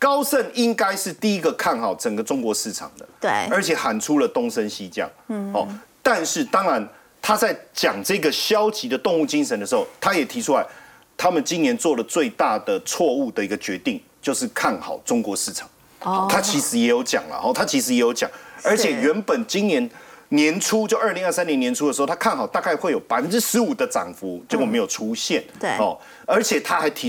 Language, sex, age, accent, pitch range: Chinese, male, 40-59, native, 195-260 Hz